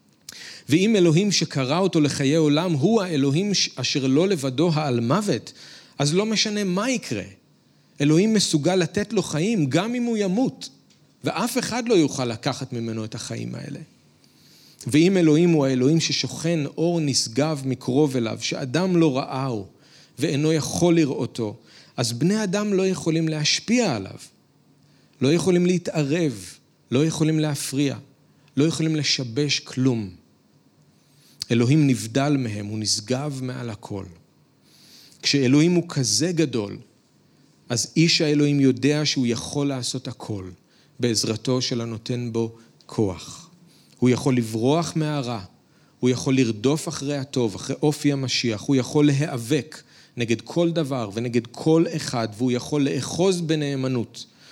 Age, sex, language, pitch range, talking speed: 40-59, male, Hebrew, 120-160 Hz, 130 wpm